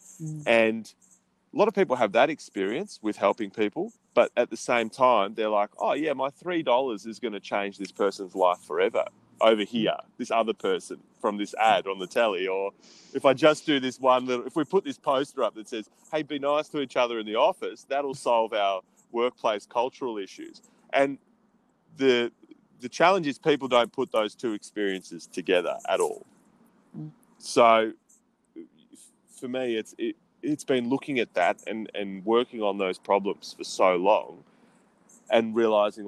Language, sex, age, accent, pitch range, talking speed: English, male, 30-49, Australian, 105-155 Hz, 180 wpm